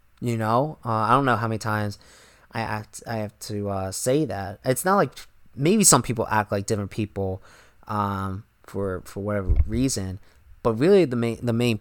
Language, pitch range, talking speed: English, 105-125 Hz, 195 wpm